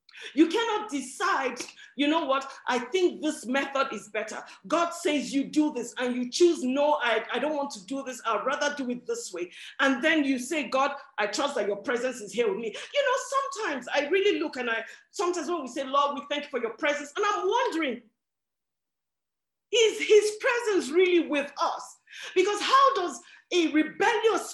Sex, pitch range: female, 255-355 Hz